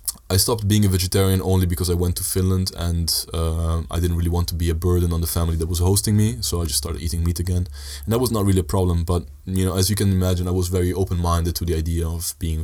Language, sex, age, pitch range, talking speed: Dutch, male, 20-39, 85-95 Hz, 275 wpm